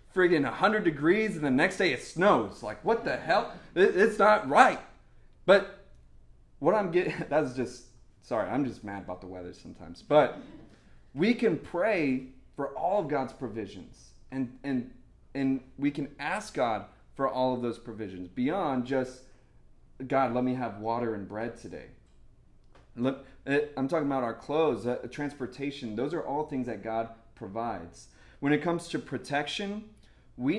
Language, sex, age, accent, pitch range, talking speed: English, male, 30-49, American, 115-150 Hz, 160 wpm